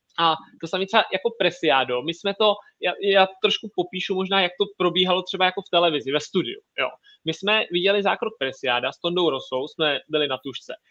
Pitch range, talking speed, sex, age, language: 160-205 Hz, 200 wpm, male, 30-49, Czech